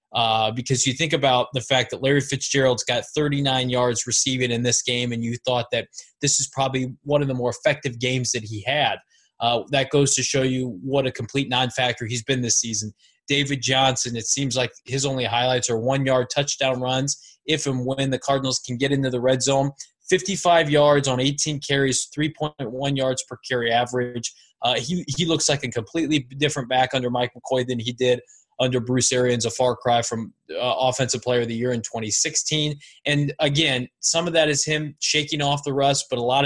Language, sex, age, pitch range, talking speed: English, male, 20-39, 125-145 Hz, 205 wpm